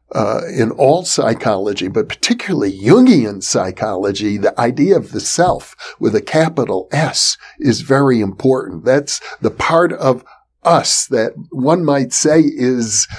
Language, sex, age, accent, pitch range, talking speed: English, male, 60-79, American, 100-160 Hz, 135 wpm